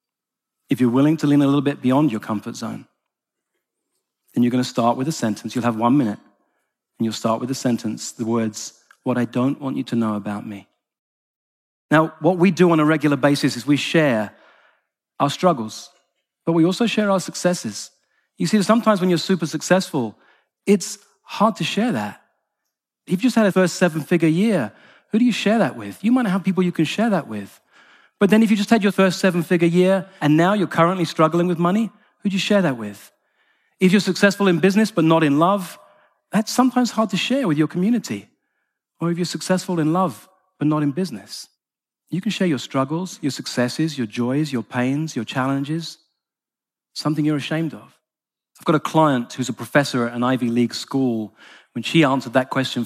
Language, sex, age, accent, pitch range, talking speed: English, male, 40-59, British, 130-190 Hz, 205 wpm